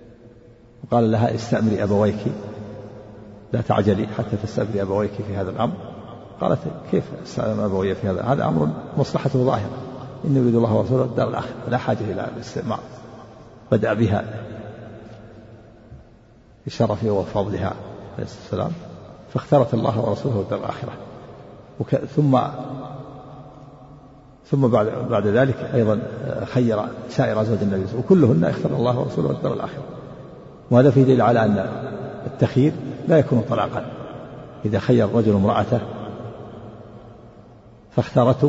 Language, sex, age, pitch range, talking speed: Arabic, male, 50-69, 105-125 Hz, 115 wpm